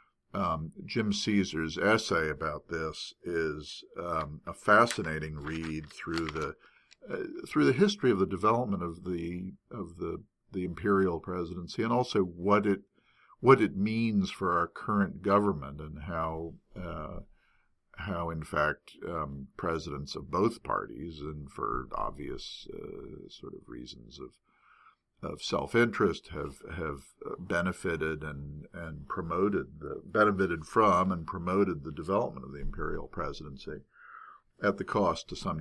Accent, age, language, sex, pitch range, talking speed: American, 50-69, English, male, 75-100 Hz, 135 wpm